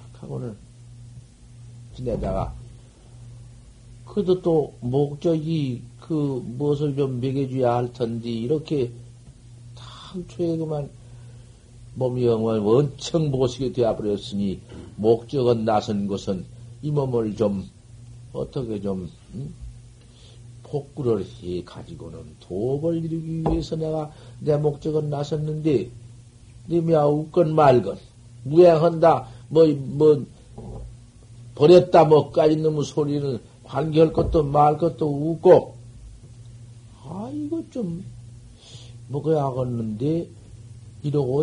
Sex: male